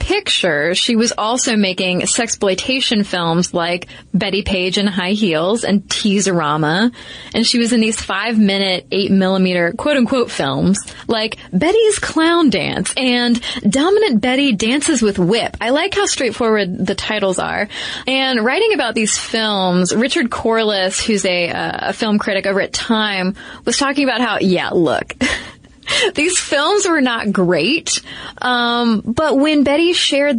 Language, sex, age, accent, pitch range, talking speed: English, female, 20-39, American, 195-270 Hz, 145 wpm